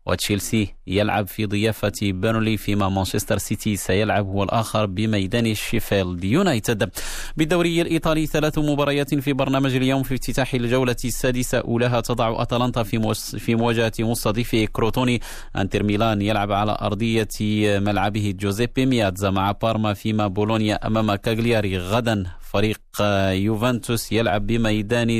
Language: Arabic